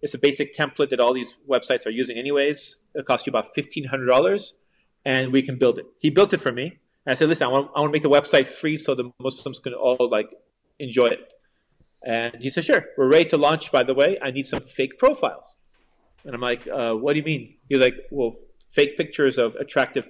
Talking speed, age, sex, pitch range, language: 235 wpm, 30-49, male, 135-160 Hz, English